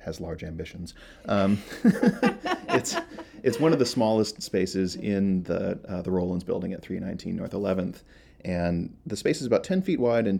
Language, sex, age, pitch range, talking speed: English, male, 30-49, 90-110 Hz, 175 wpm